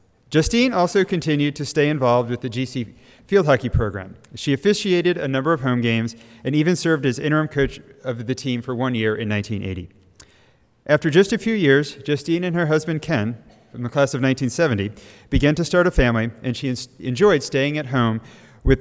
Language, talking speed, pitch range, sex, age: English, 190 wpm, 120-155 Hz, male, 40-59